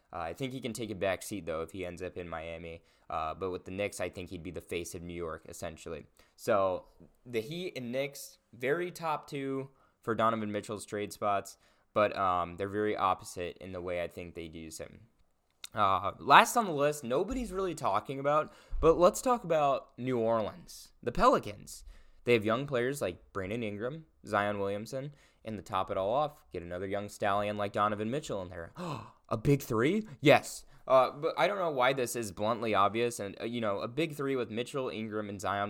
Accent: American